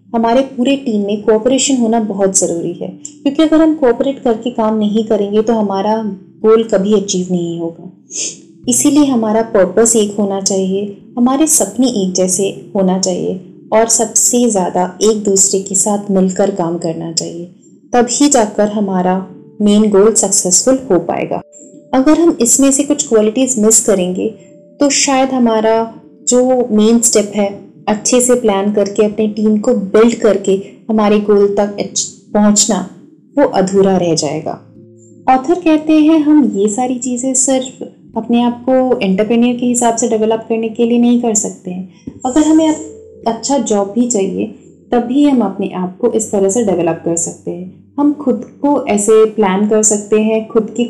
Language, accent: Hindi, native